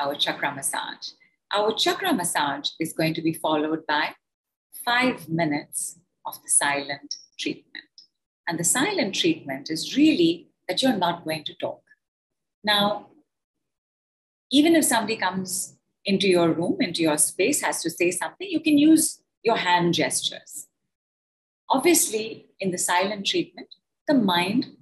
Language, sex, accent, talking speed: English, female, Indian, 140 wpm